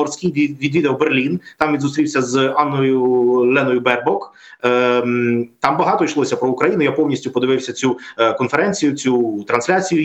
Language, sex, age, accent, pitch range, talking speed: Ukrainian, male, 20-39, native, 125-155 Hz, 145 wpm